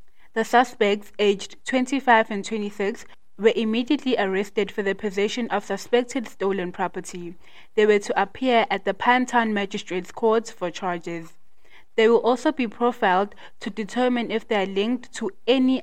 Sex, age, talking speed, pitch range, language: female, 20-39, 150 wpm, 195-235 Hz, English